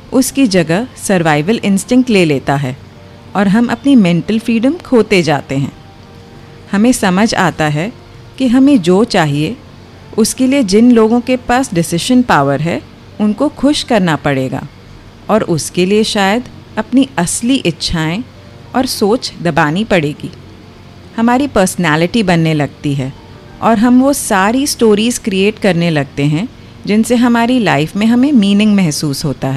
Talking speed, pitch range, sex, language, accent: 140 wpm, 145-225 Hz, female, Hindi, native